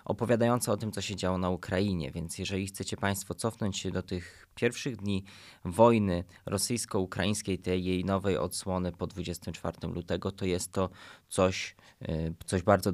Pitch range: 85-105 Hz